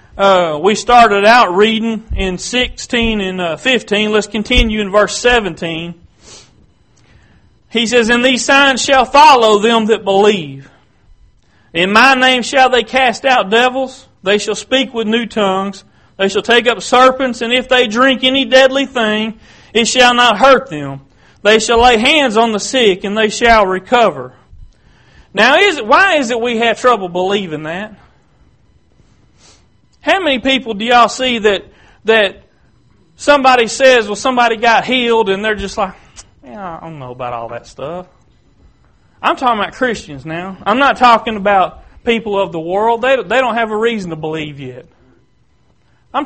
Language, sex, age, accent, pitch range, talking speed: English, male, 40-59, American, 195-255 Hz, 165 wpm